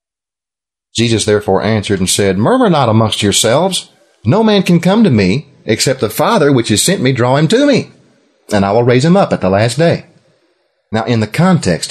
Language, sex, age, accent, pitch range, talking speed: English, male, 40-59, American, 105-175 Hz, 200 wpm